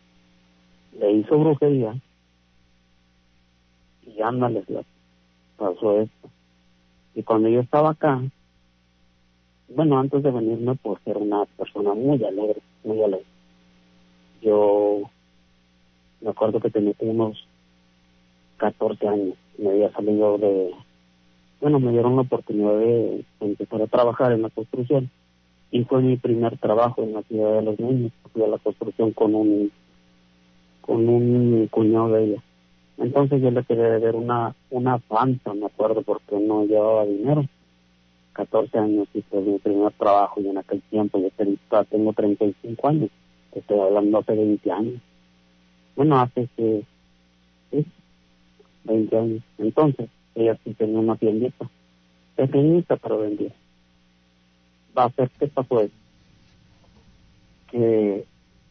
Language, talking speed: Spanish, 130 wpm